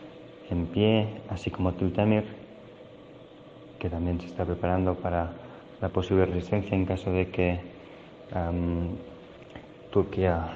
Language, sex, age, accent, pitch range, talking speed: Spanish, male, 20-39, Spanish, 90-100 Hz, 110 wpm